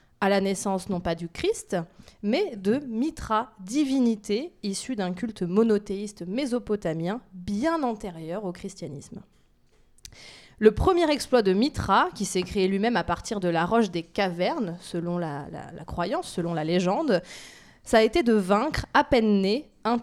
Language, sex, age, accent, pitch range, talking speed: French, female, 20-39, French, 185-245 Hz, 160 wpm